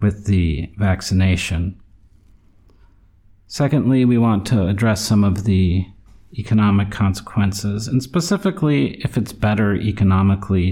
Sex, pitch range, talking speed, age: male, 90-110 Hz, 105 wpm, 40-59